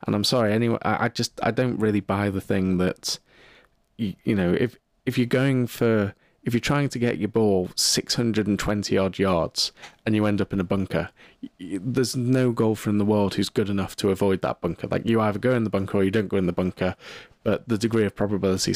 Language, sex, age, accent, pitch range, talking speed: English, male, 20-39, British, 95-115 Hz, 220 wpm